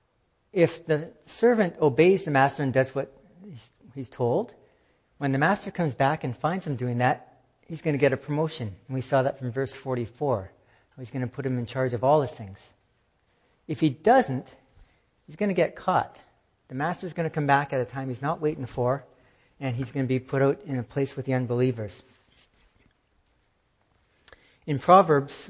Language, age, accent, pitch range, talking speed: English, 60-79, American, 120-150 Hz, 190 wpm